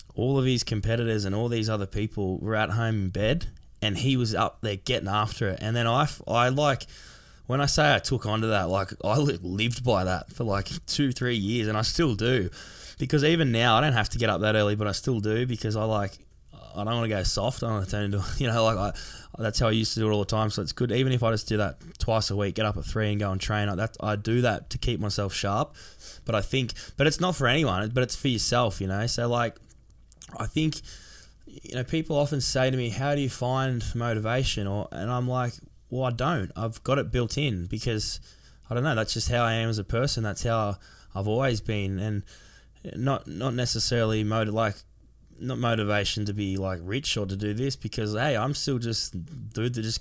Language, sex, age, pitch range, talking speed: English, male, 20-39, 105-125 Hz, 245 wpm